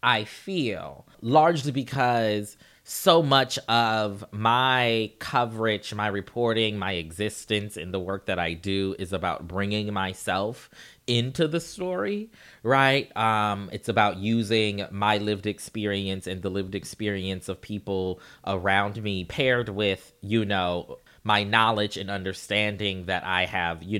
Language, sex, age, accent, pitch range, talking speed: English, male, 20-39, American, 100-125 Hz, 135 wpm